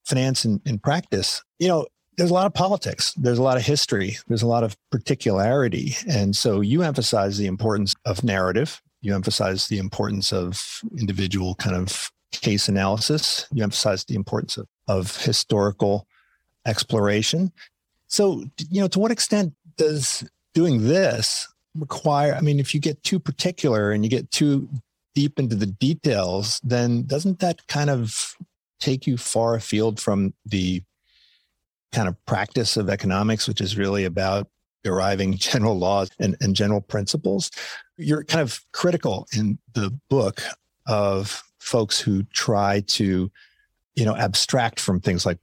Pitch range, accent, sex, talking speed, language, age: 100-145 Hz, American, male, 155 wpm, English, 50-69